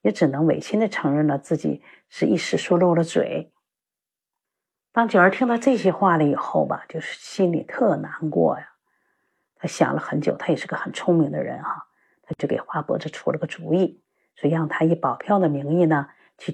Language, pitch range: Chinese, 155-190 Hz